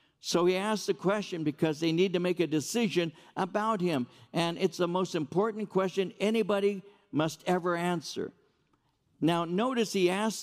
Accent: American